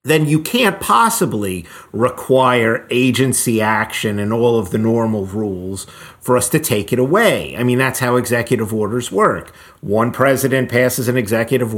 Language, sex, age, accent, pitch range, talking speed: English, male, 50-69, American, 110-130 Hz, 160 wpm